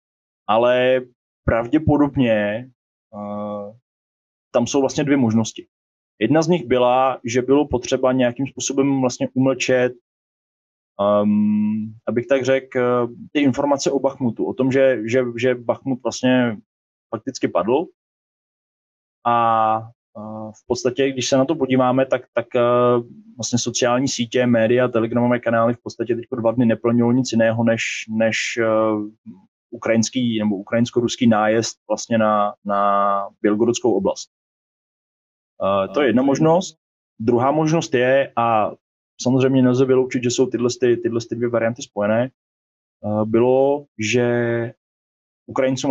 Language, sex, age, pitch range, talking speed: Slovak, male, 20-39, 115-130 Hz, 125 wpm